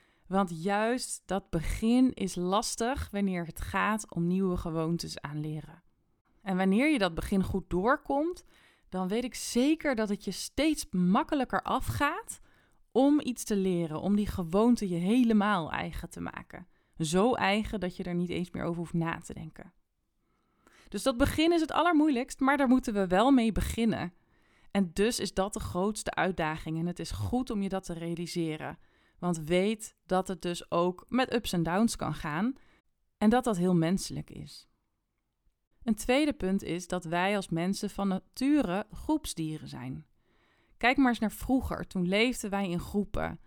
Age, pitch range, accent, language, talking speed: 20-39, 175-235 Hz, Dutch, Dutch, 175 wpm